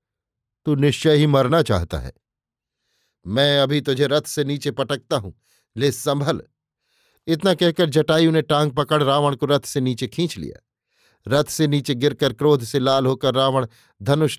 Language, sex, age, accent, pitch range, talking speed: Hindi, male, 50-69, native, 130-150 Hz, 165 wpm